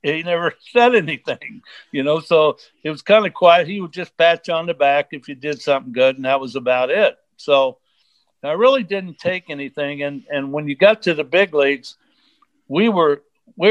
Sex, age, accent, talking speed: male, 60-79, American, 210 wpm